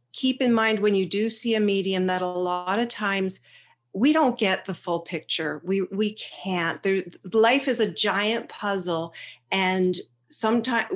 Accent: American